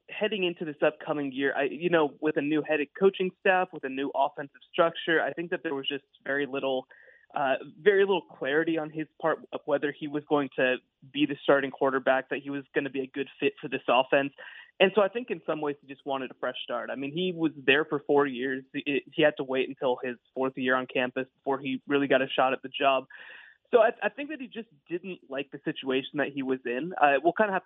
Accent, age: American, 20-39